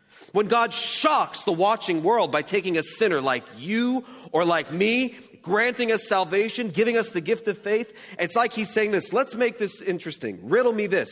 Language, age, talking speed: English, 40-59, 195 wpm